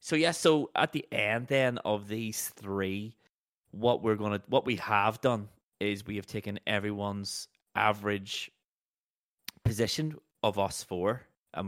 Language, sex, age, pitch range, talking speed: English, male, 20-39, 95-110 Hz, 145 wpm